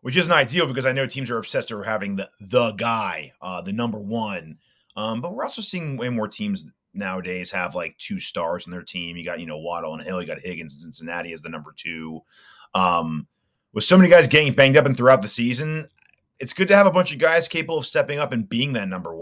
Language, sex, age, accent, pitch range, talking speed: English, male, 30-49, American, 100-140 Hz, 245 wpm